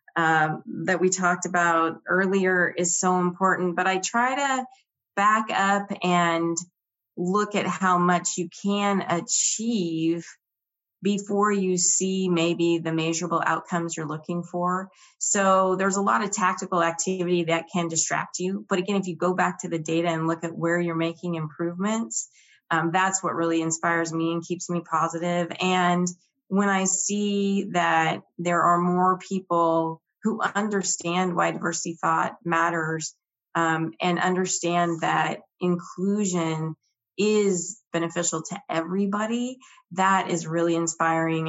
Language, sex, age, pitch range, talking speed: English, female, 30-49, 165-195 Hz, 140 wpm